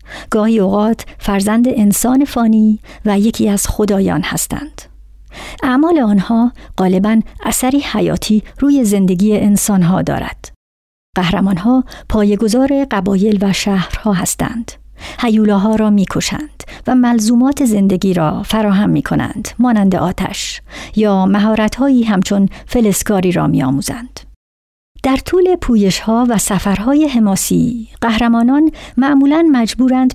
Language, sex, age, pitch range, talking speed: Persian, male, 50-69, 200-250 Hz, 105 wpm